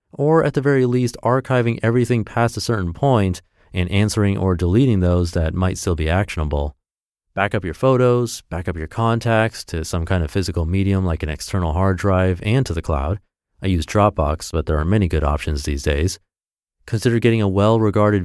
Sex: male